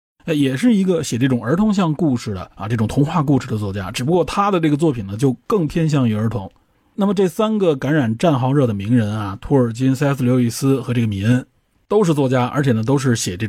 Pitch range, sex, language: 115-155 Hz, male, Chinese